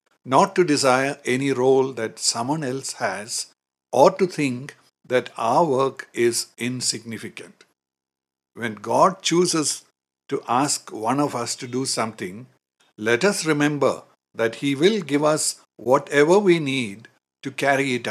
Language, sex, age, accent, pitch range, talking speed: English, male, 60-79, Indian, 110-145 Hz, 140 wpm